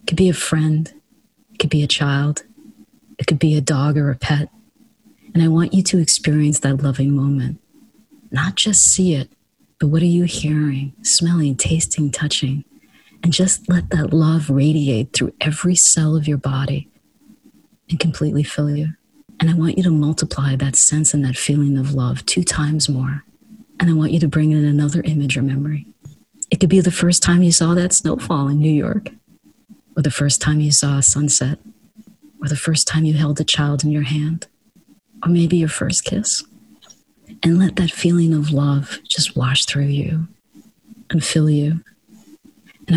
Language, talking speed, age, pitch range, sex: English, 185 wpm, 40-59, 145-170 Hz, female